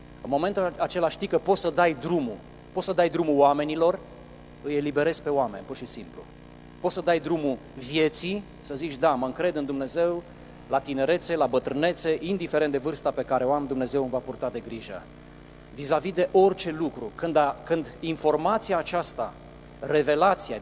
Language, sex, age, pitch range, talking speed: Romanian, male, 40-59, 135-170 Hz, 170 wpm